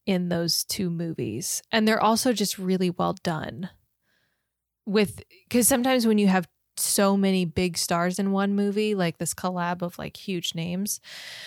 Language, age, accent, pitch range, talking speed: English, 20-39, American, 170-195 Hz, 160 wpm